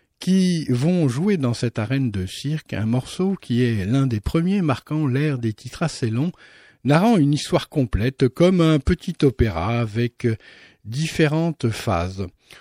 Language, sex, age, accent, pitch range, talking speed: French, male, 50-69, French, 110-155 Hz, 150 wpm